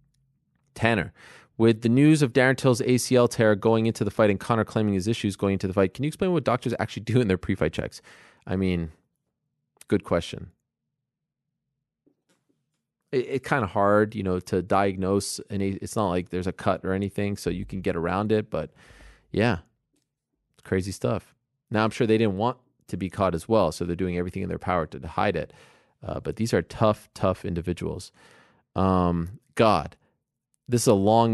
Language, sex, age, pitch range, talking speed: English, male, 20-39, 95-120 Hz, 195 wpm